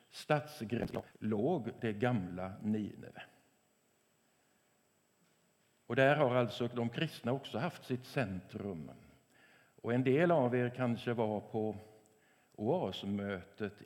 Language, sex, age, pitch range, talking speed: English, male, 50-69, 105-130 Hz, 105 wpm